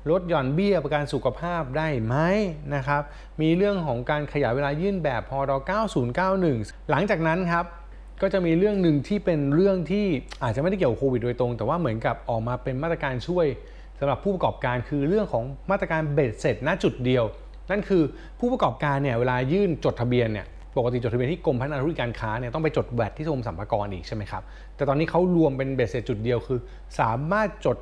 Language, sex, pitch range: Thai, male, 120-165 Hz